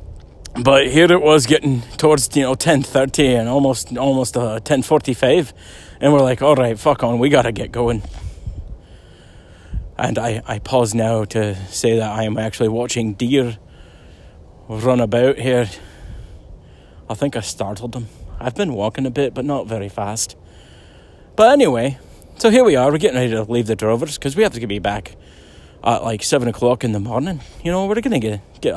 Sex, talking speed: male, 180 wpm